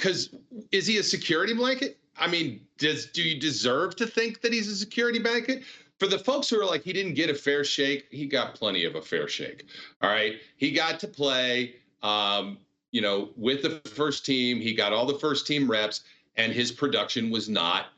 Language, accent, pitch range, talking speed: English, American, 115-150 Hz, 210 wpm